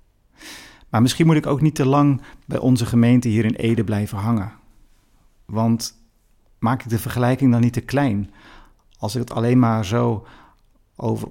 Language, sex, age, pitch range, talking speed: Dutch, male, 50-69, 110-130 Hz, 165 wpm